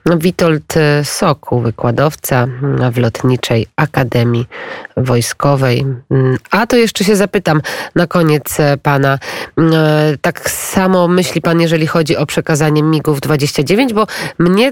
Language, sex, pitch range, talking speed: Polish, female, 145-170 Hz, 110 wpm